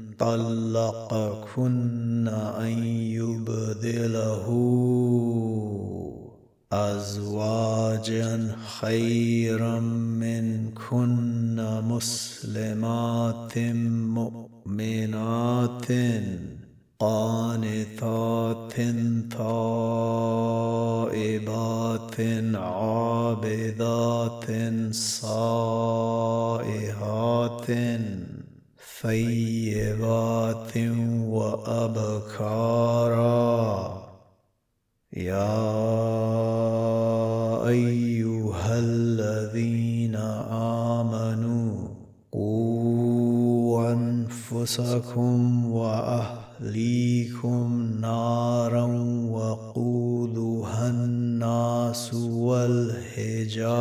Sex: male